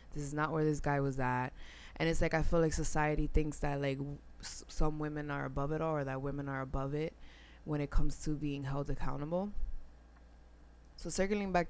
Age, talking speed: 20-39, 205 wpm